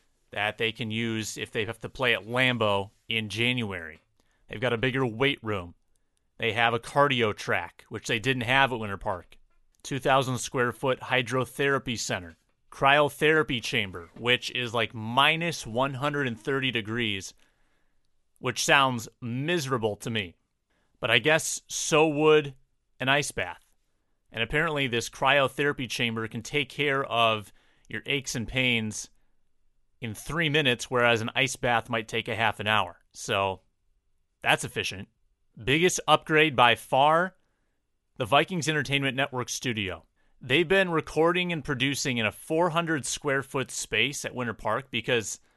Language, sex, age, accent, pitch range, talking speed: English, male, 30-49, American, 110-140 Hz, 140 wpm